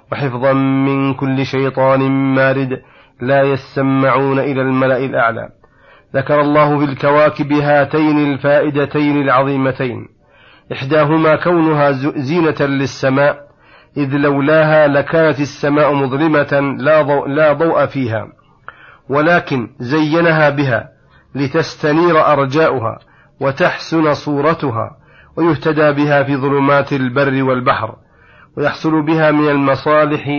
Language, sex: Arabic, male